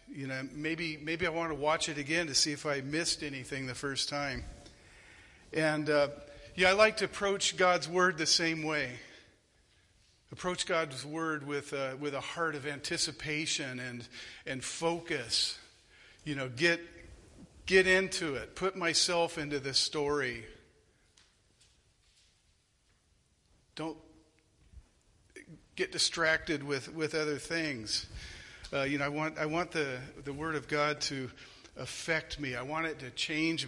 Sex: male